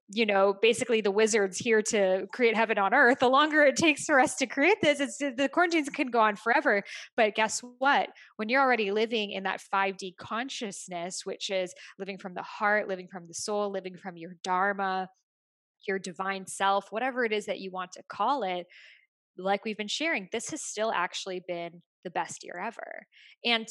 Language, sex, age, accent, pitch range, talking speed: English, female, 10-29, American, 190-245 Hz, 195 wpm